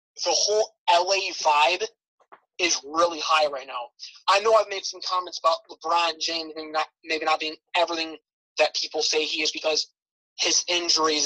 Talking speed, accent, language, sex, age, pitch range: 165 wpm, American, English, male, 20-39, 155-185 Hz